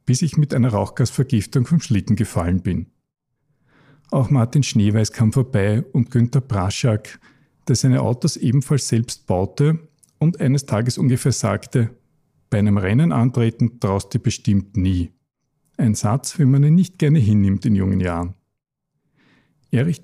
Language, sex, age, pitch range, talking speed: German, male, 50-69, 110-145 Hz, 145 wpm